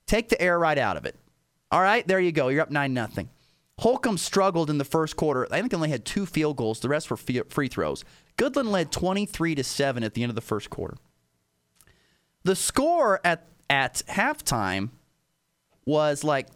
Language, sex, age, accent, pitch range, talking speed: English, male, 30-49, American, 130-170 Hz, 195 wpm